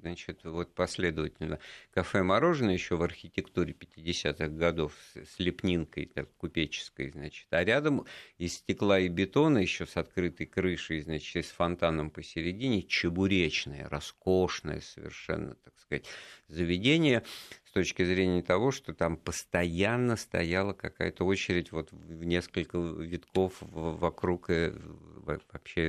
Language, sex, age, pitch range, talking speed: Russian, male, 50-69, 80-95 Hz, 115 wpm